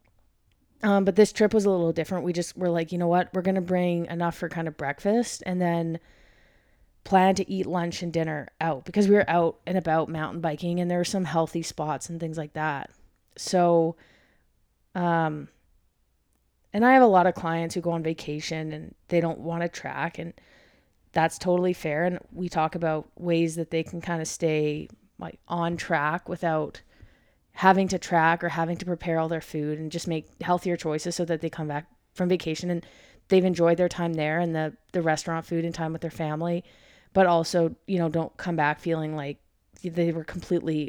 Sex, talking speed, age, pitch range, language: female, 205 wpm, 20-39, 155-175 Hz, English